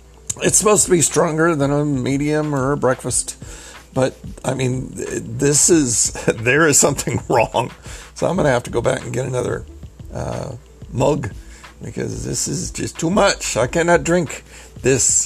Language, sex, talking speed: English, male, 170 wpm